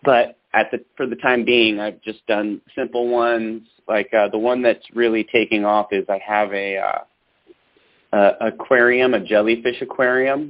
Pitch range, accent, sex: 100-120 Hz, American, male